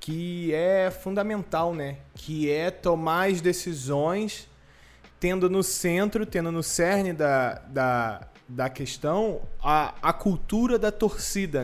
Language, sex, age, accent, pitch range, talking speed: Portuguese, male, 20-39, Brazilian, 145-195 Hz, 120 wpm